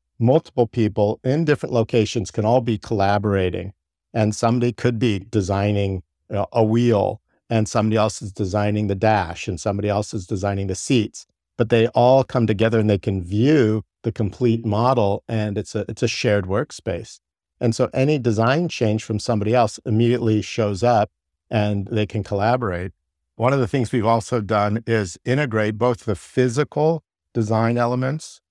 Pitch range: 100-120 Hz